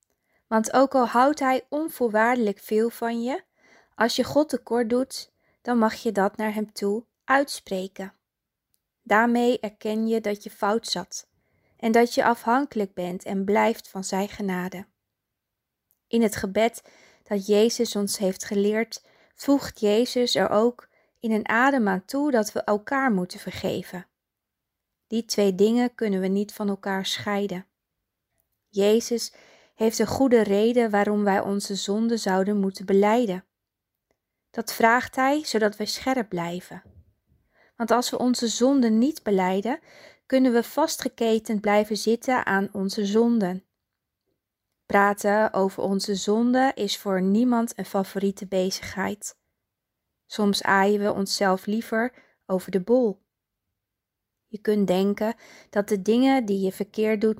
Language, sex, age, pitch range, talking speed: Dutch, female, 20-39, 195-235 Hz, 140 wpm